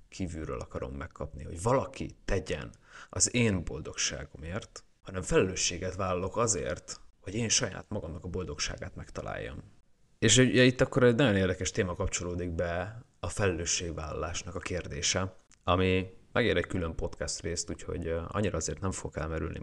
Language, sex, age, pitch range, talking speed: Hungarian, male, 30-49, 85-105 Hz, 140 wpm